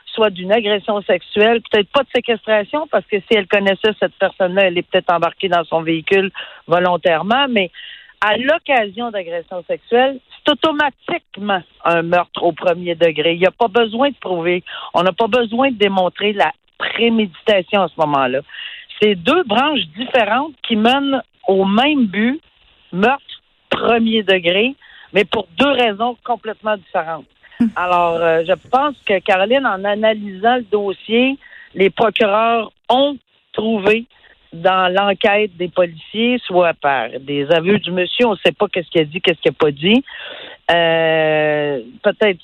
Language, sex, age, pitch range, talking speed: French, female, 50-69, 180-240 Hz, 155 wpm